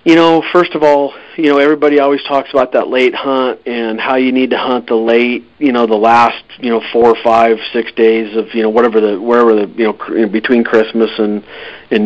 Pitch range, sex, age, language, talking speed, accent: 110-125 Hz, male, 40-59, English, 230 wpm, American